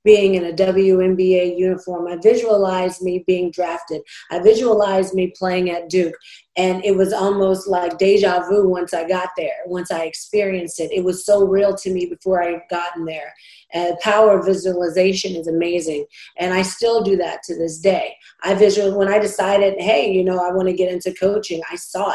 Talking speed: 190 wpm